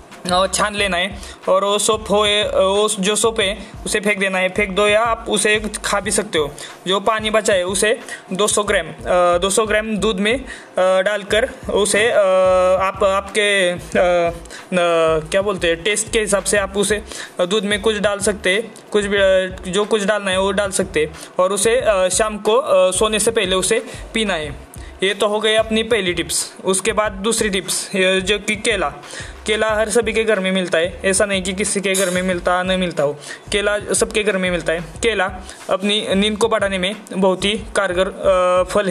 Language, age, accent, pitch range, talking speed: Hindi, 20-39, native, 185-220 Hz, 195 wpm